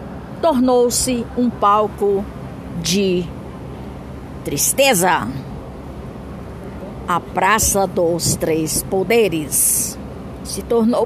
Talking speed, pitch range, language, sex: 65 wpm, 165-275 Hz, Portuguese, female